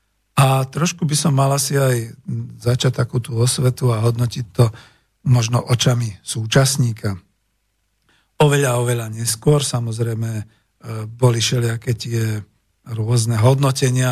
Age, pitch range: 50-69, 115-145 Hz